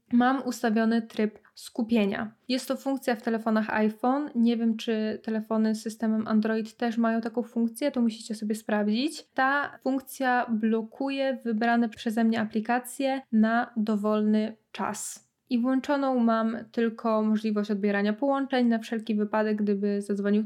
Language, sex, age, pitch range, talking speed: Polish, female, 20-39, 215-245 Hz, 140 wpm